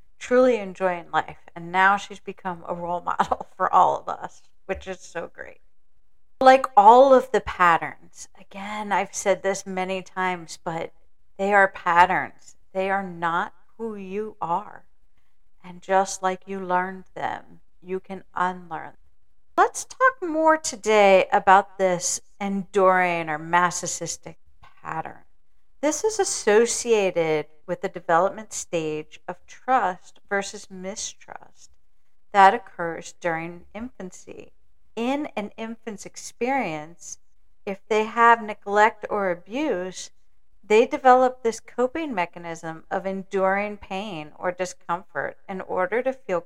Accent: American